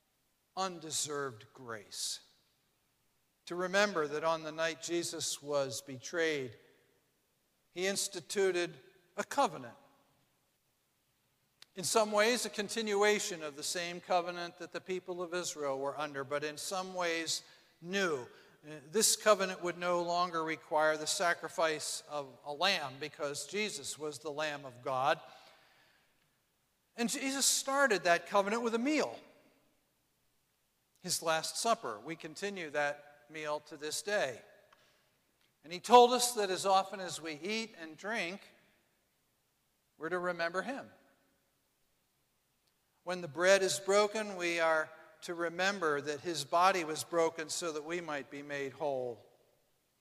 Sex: male